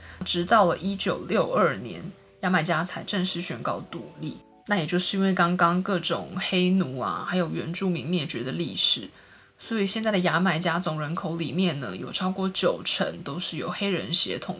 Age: 20-39